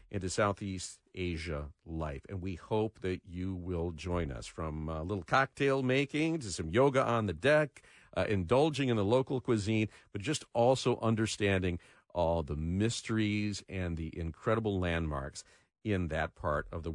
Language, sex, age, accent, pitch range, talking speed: English, male, 50-69, American, 90-130 Hz, 160 wpm